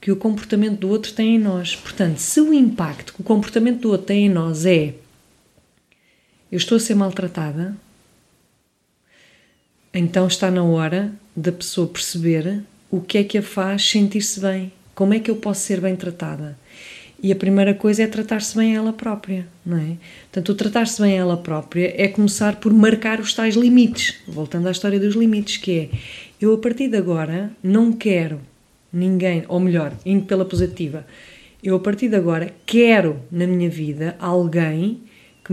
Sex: female